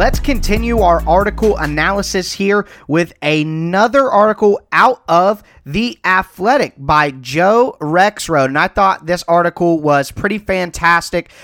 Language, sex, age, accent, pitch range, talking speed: English, male, 30-49, American, 145-180 Hz, 125 wpm